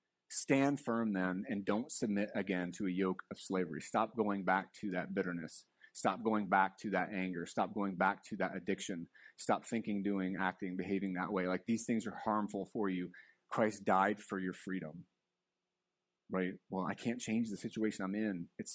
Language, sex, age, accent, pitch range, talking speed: English, male, 30-49, American, 95-115 Hz, 190 wpm